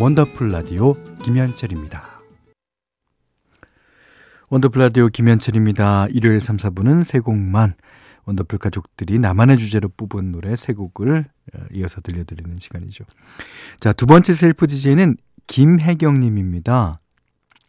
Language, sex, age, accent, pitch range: Korean, male, 40-59, native, 95-130 Hz